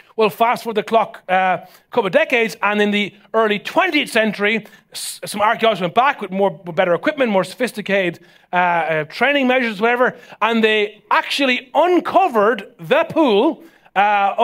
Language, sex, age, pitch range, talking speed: English, male, 30-49, 195-255 Hz, 160 wpm